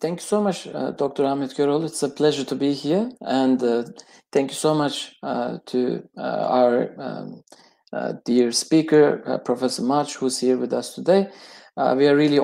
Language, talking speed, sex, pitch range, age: Turkish, 195 wpm, male, 130-170 Hz, 50-69